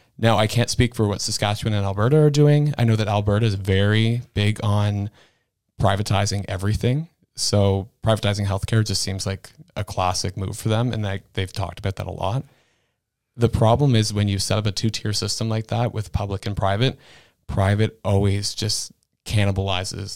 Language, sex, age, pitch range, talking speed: English, male, 30-49, 100-115 Hz, 180 wpm